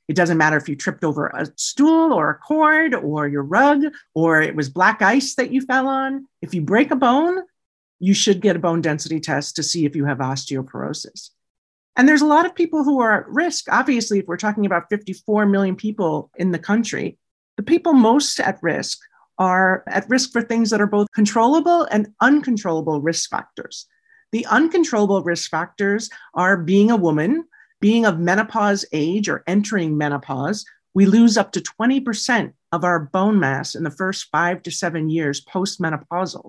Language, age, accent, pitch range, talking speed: English, 40-59, American, 170-260 Hz, 185 wpm